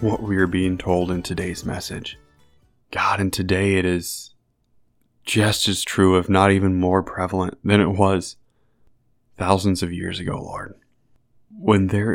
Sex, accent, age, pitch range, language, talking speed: male, American, 20-39, 95-110 Hz, English, 155 wpm